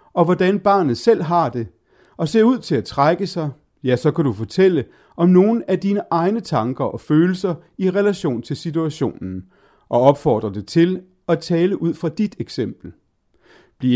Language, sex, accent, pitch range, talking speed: Danish, male, native, 120-190 Hz, 175 wpm